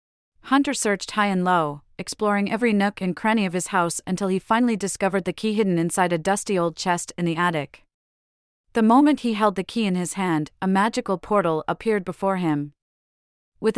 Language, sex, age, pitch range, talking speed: English, female, 30-49, 165-210 Hz, 190 wpm